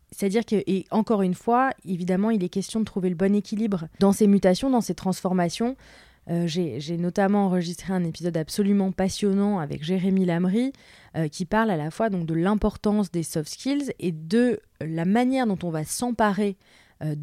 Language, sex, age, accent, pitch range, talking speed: French, female, 20-39, French, 175-220 Hz, 190 wpm